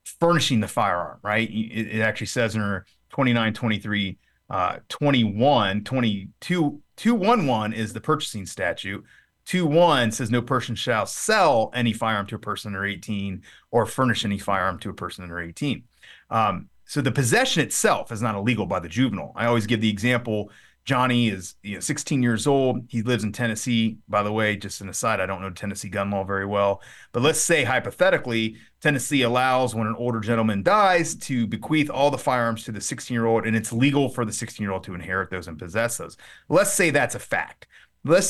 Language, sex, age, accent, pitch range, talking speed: English, male, 30-49, American, 110-140 Hz, 190 wpm